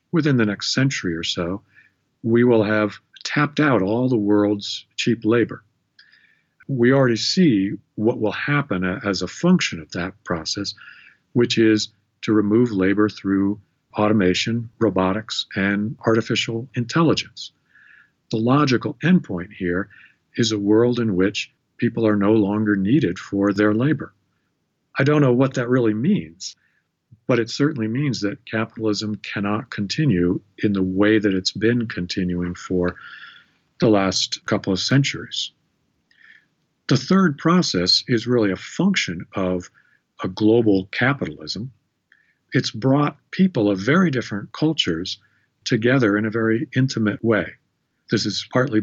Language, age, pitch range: English, 50-69, 100-125 Hz